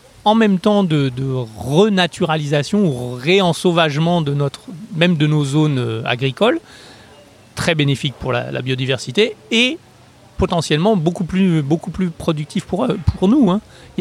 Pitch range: 135-180 Hz